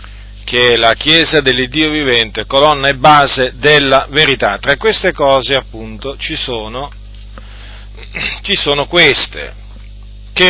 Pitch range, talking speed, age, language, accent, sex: 100-140 Hz, 120 wpm, 40-59, Italian, native, male